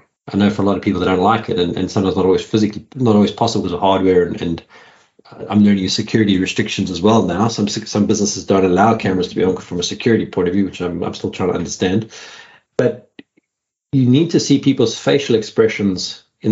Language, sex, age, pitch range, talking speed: English, male, 30-49, 95-110 Hz, 230 wpm